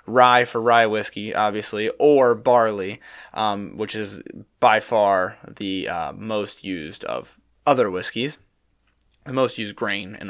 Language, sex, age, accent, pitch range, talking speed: English, male, 20-39, American, 105-135 Hz, 140 wpm